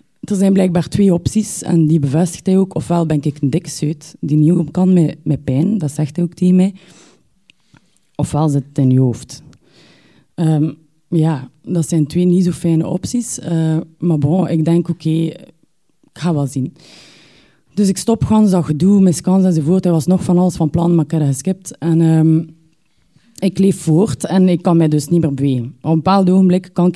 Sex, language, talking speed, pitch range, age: female, Dutch, 205 wpm, 155-180 Hz, 30-49